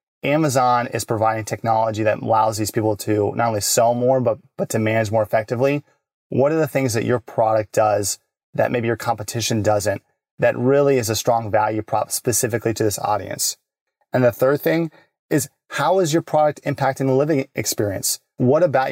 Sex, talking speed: male, 185 wpm